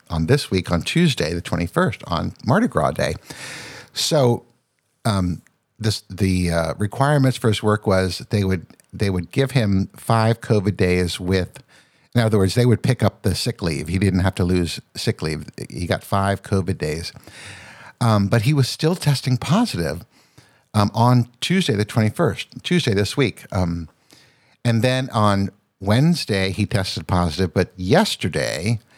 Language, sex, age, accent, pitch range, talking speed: English, male, 60-79, American, 95-120 Hz, 160 wpm